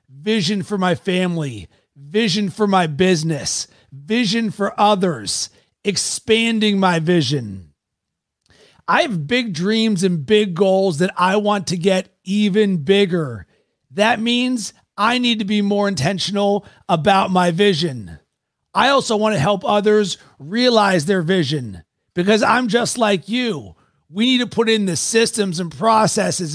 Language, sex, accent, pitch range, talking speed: English, male, American, 175-210 Hz, 140 wpm